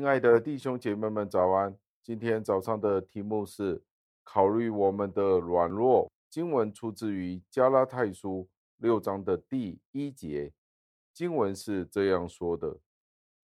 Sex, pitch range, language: male, 95-115 Hz, Chinese